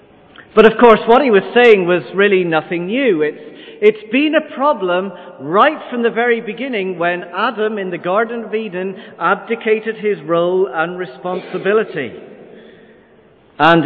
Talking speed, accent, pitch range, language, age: 145 wpm, British, 155-220 Hz, English, 50-69